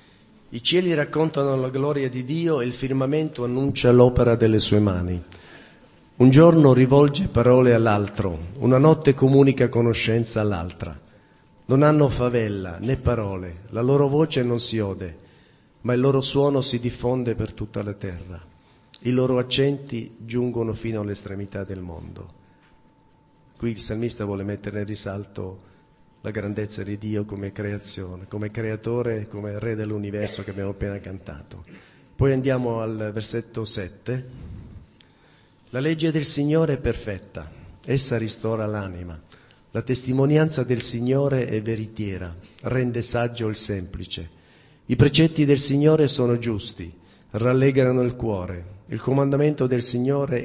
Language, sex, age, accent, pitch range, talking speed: Italian, male, 50-69, native, 100-130 Hz, 135 wpm